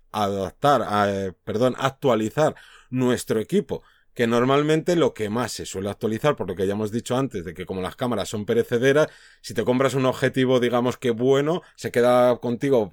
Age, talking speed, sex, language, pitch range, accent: 30-49, 180 wpm, male, Spanish, 120-150 Hz, Spanish